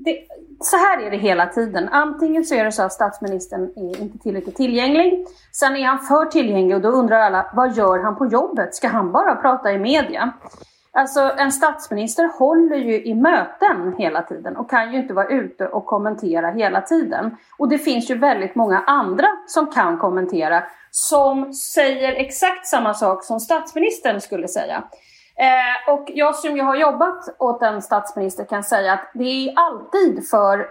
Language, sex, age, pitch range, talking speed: Swedish, female, 30-49, 215-305 Hz, 180 wpm